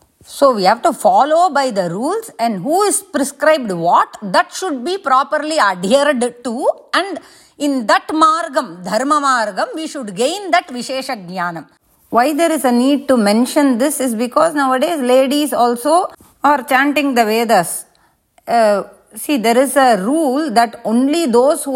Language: English